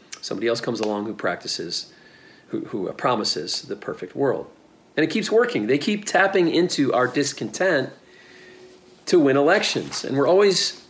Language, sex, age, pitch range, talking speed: English, male, 40-59, 140-215 Hz, 155 wpm